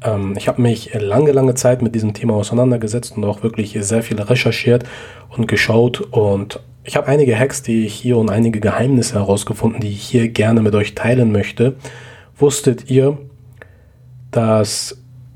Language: German